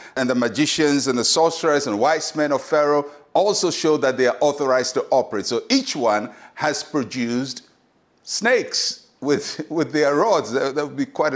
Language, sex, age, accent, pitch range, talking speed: English, male, 60-79, Nigerian, 135-195 Hz, 175 wpm